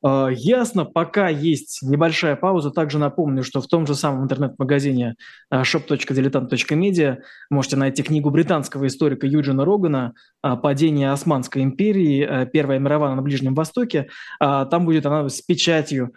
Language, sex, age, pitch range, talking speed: Russian, male, 20-39, 140-185 Hz, 125 wpm